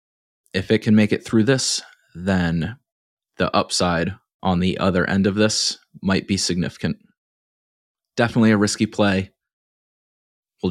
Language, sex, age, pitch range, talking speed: English, male, 20-39, 90-110 Hz, 135 wpm